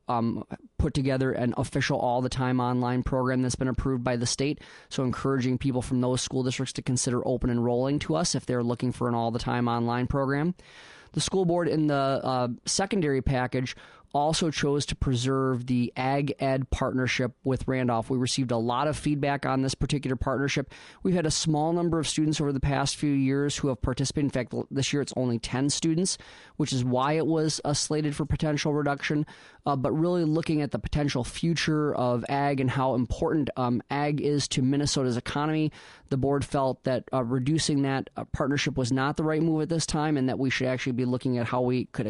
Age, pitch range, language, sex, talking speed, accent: 20-39, 125-145 Hz, English, male, 200 wpm, American